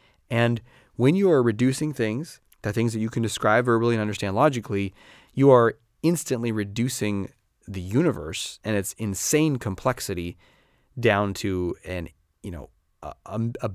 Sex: male